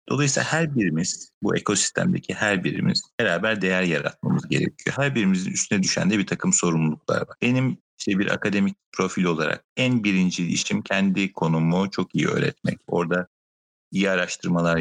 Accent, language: native, Turkish